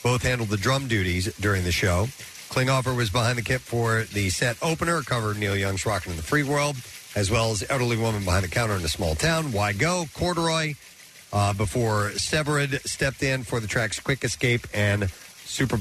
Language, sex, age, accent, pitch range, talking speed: English, male, 50-69, American, 110-150 Hz, 195 wpm